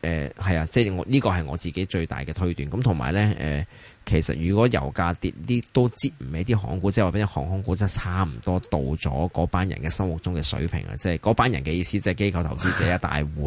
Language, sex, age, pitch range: Chinese, male, 20-39, 80-110 Hz